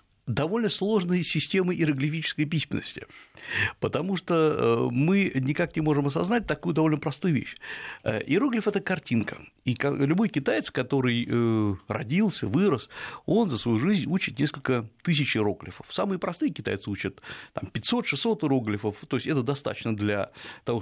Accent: native